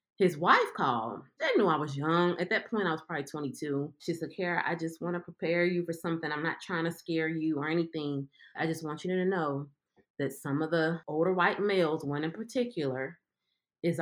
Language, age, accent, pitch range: English, 30-49, American, 155-200 Hz